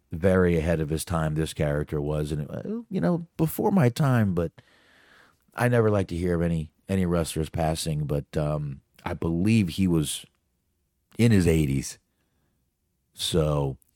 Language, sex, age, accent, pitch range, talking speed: English, male, 40-59, American, 80-105 Hz, 150 wpm